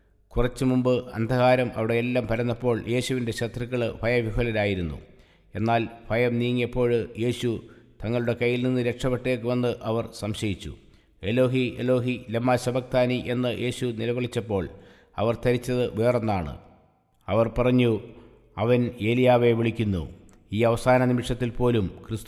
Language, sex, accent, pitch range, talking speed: English, male, Indian, 110-120 Hz, 95 wpm